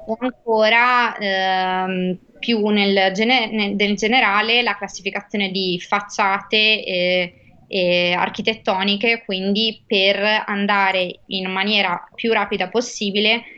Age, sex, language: 20-39, female, Italian